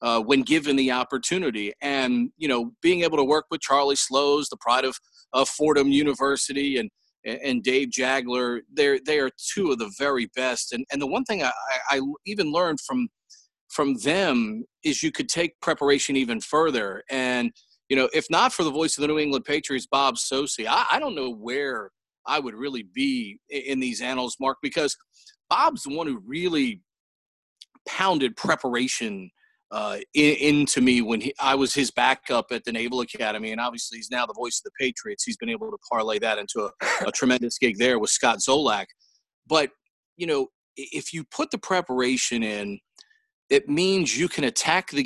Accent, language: American, English